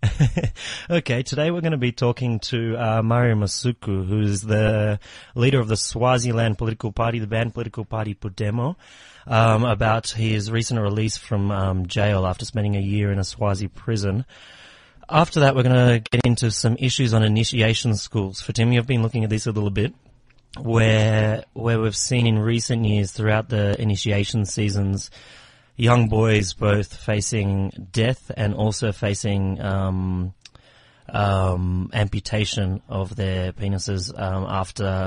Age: 30-49